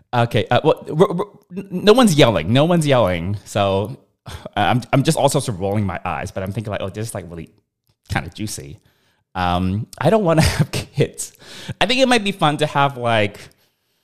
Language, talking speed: English, 215 wpm